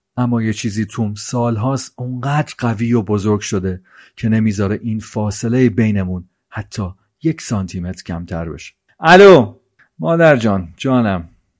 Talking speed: 130 wpm